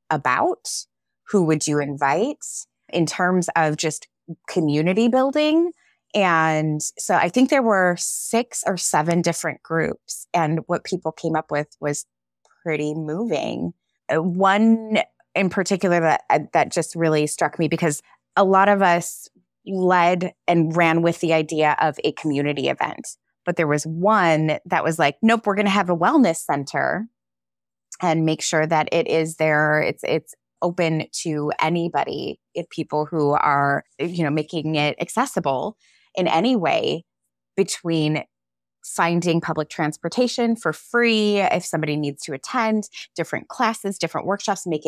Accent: American